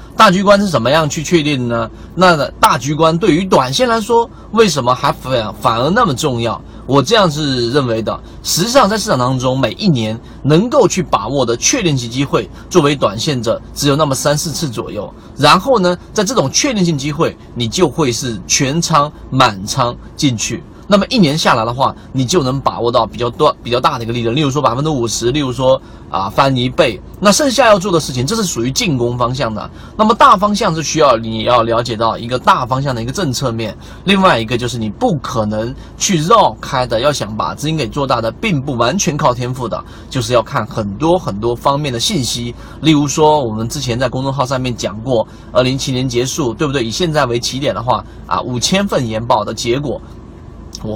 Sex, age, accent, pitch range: male, 30-49, native, 120-170 Hz